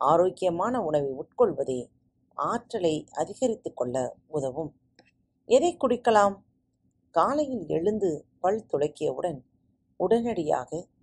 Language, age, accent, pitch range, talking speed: Tamil, 40-59, native, 140-220 Hz, 75 wpm